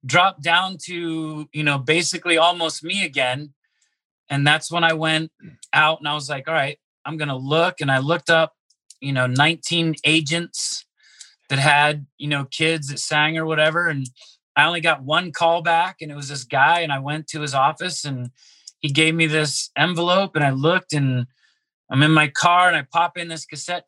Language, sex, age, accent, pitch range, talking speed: English, male, 30-49, American, 135-160 Hz, 200 wpm